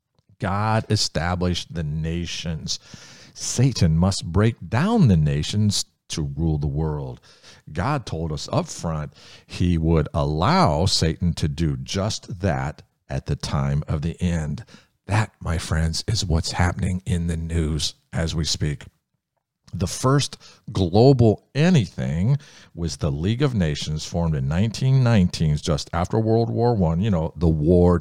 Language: English